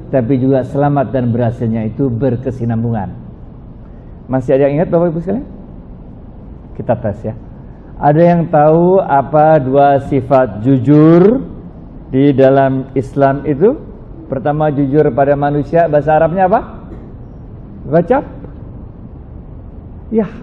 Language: Indonesian